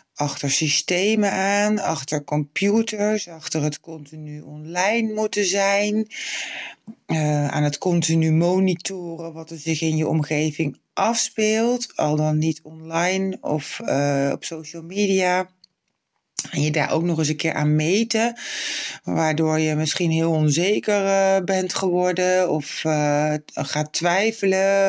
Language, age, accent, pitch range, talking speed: Dutch, 20-39, Dutch, 155-195 Hz, 130 wpm